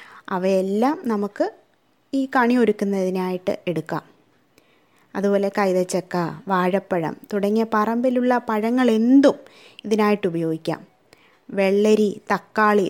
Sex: female